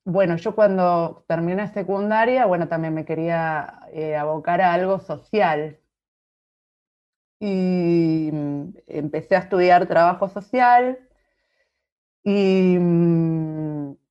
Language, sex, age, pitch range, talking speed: Spanish, female, 30-49, 160-205 Hz, 90 wpm